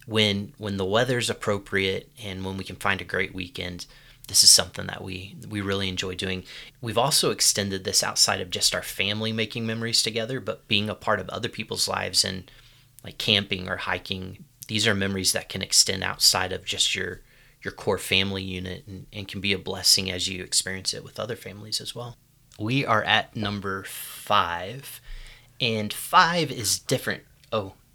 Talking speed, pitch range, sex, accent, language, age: 185 wpm, 95-125 Hz, male, American, English, 30-49